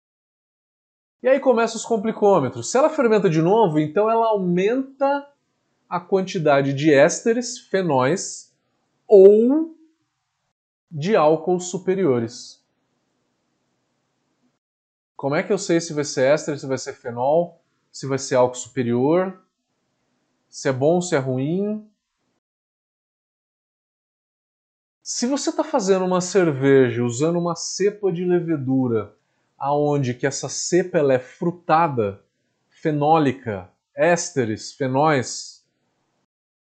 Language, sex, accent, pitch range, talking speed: Portuguese, male, Brazilian, 135-195 Hz, 110 wpm